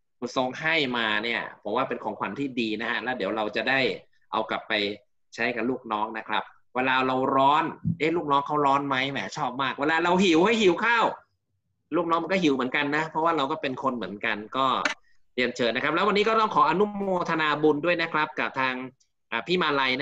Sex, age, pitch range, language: male, 20-39, 120-155 Hz, Thai